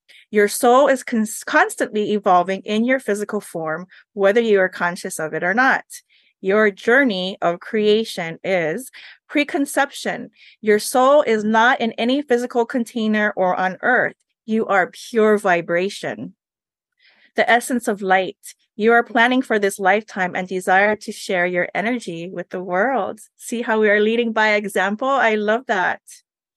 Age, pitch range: 30-49, 185-235 Hz